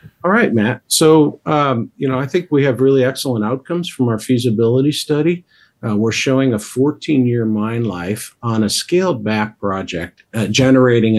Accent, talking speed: American, 165 wpm